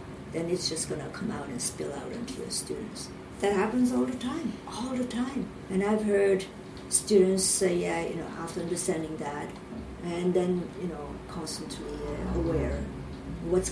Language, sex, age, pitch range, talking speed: English, female, 50-69, 160-190 Hz, 170 wpm